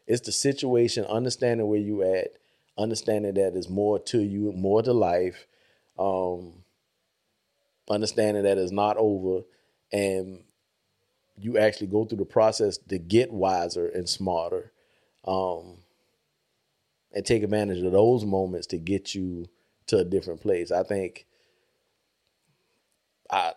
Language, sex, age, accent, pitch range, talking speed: English, male, 30-49, American, 95-115 Hz, 130 wpm